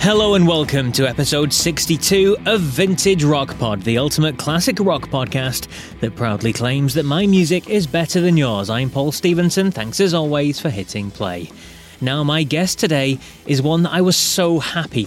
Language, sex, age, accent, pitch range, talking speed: English, male, 30-49, British, 120-170 Hz, 180 wpm